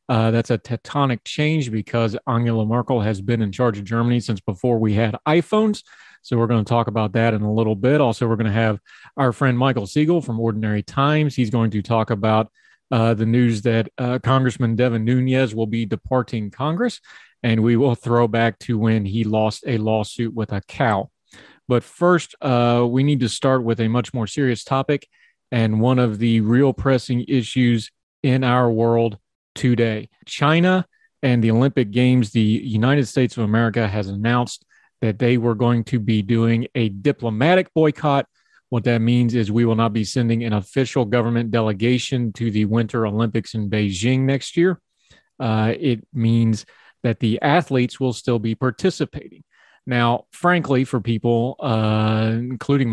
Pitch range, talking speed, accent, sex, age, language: 110-130 Hz, 175 wpm, American, male, 40-59, English